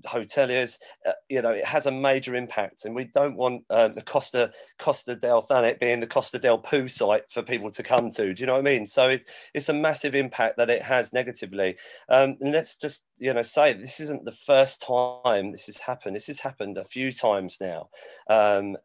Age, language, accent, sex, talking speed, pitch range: 40-59, English, British, male, 220 wpm, 100-130 Hz